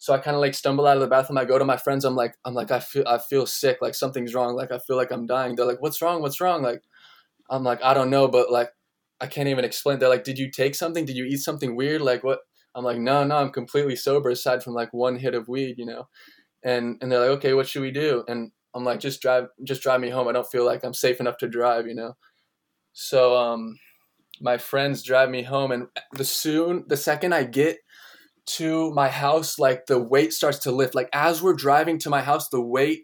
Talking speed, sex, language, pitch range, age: 255 wpm, male, English, 125-145 Hz, 10-29